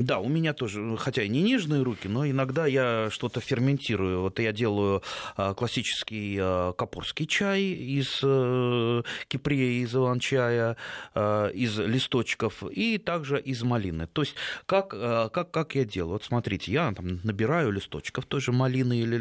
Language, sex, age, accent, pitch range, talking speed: Russian, male, 30-49, native, 115-160 Hz, 145 wpm